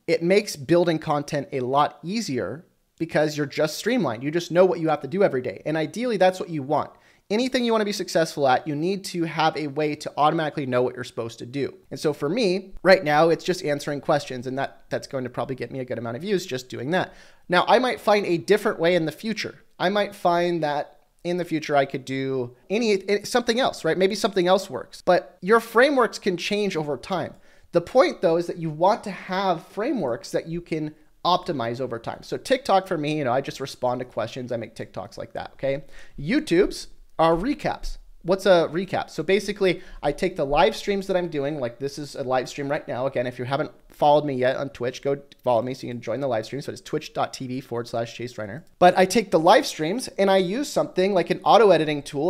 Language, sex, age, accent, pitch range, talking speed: English, male, 30-49, American, 140-185 Hz, 235 wpm